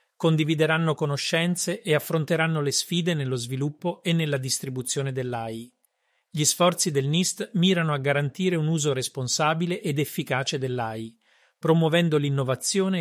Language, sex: Italian, male